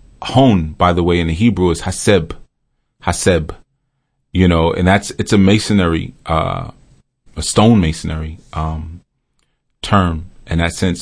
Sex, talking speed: male, 140 wpm